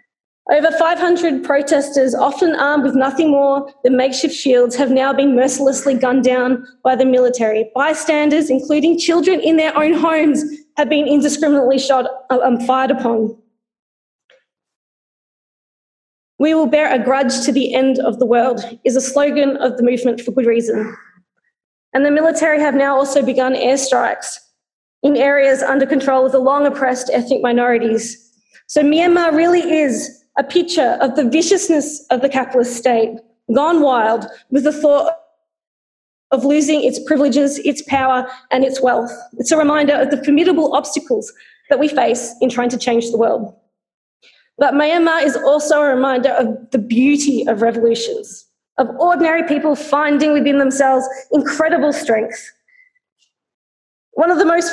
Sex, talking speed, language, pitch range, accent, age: female, 150 wpm, English, 255-305 Hz, Australian, 20-39